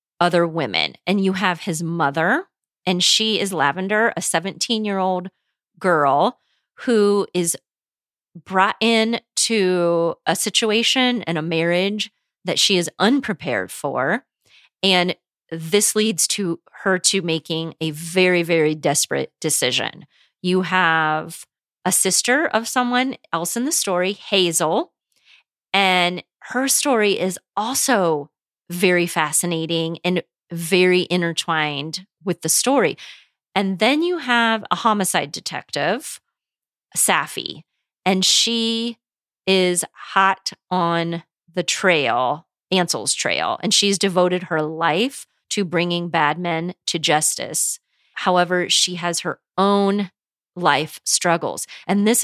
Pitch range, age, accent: 170-205 Hz, 30-49, American